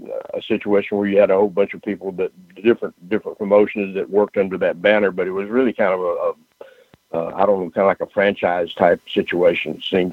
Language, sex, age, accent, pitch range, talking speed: English, male, 60-79, American, 95-125 Hz, 235 wpm